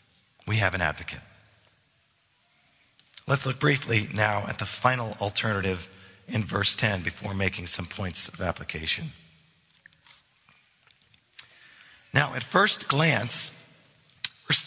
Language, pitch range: English, 105-140 Hz